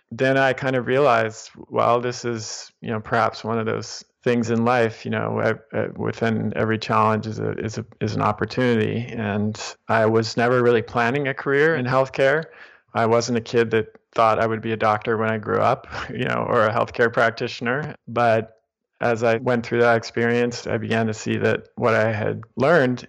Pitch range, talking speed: 115-125 Hz, 205 wpm